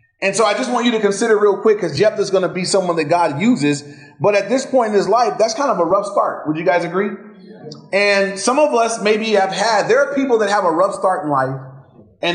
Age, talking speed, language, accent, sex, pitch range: 30-49, 265 wpm, English, American, male, 160-215 Hz